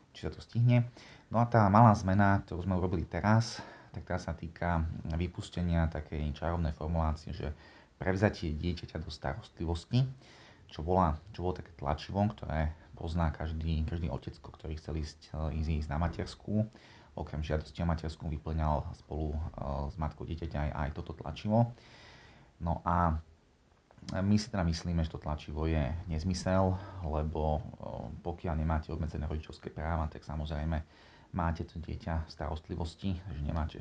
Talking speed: 140 wpm